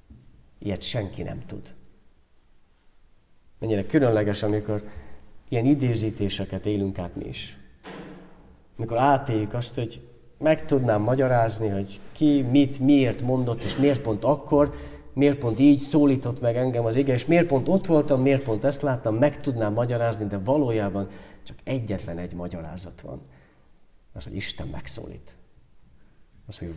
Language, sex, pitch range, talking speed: Hungarian, male, 90-120 Hz, 140 wpm